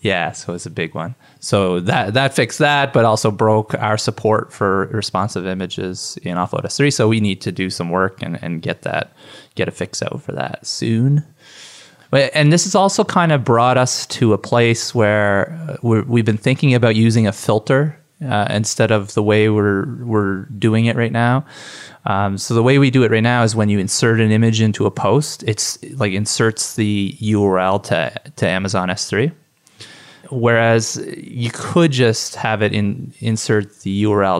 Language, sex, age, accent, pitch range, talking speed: English, male, 20-39, American, 100-130 Hz, 190 wpm